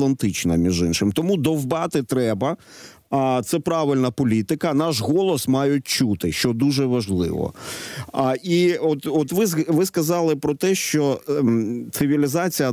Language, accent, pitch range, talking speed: Ukrainian, native, 110-150 Hz, 120 wpm